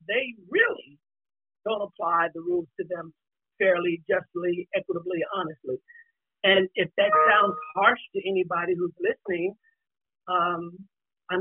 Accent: American